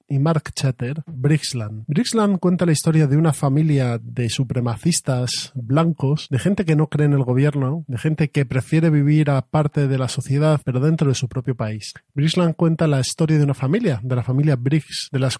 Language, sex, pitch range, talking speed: Spanish, male, 130-155 Hz, 195 wpm